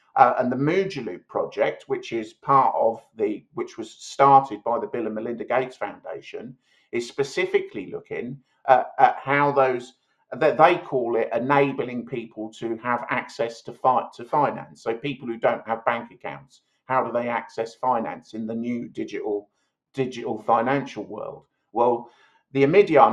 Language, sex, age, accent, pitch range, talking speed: English, male, 50-69, British, 120-195 Hz, 160 wpm